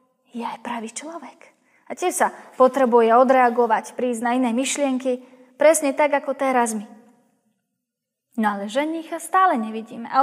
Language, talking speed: Slovak, 140 wpm